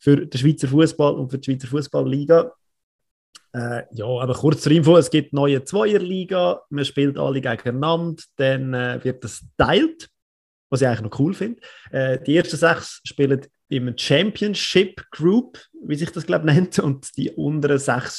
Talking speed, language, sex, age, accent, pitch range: 165 wpm, German, male, 30-49, German, 130-165 Hz